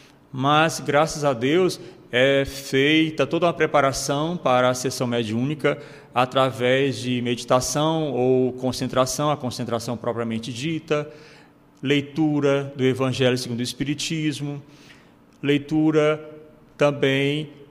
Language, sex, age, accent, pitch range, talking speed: Portuguese, male, 40-59, Brazilian, 130-165 Hz, 100 wpm